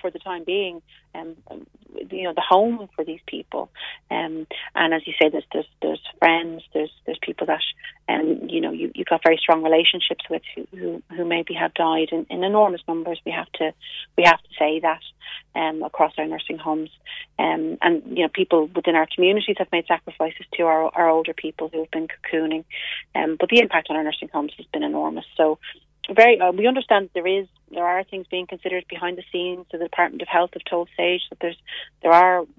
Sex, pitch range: female, 160-185 Hz